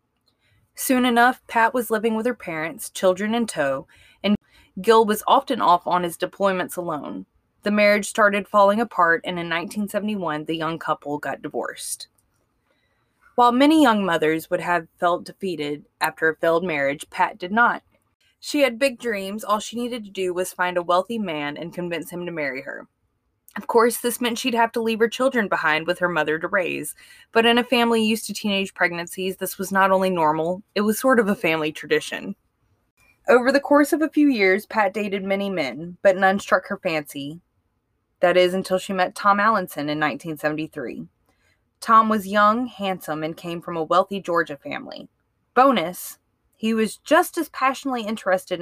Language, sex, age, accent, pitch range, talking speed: English, female, 20-39, American, 170-230 Hz, 180 wpm